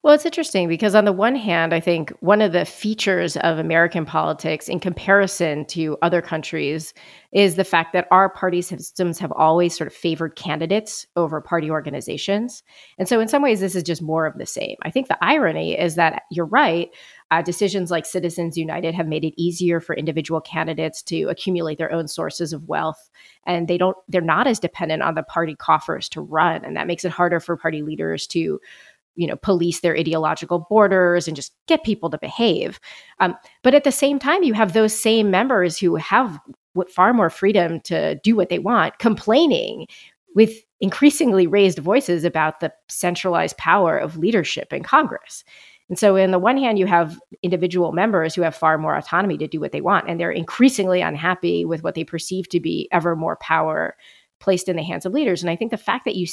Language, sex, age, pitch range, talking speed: English, female, 30-49, 165-200 Hz, 200 wpm